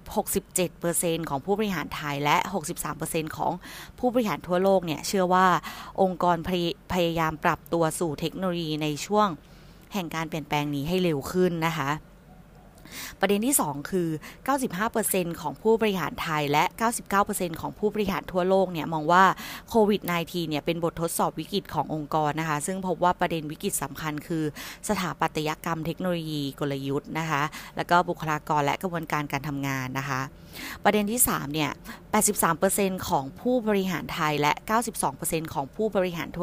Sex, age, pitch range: female, 20-39, 155-190 Hz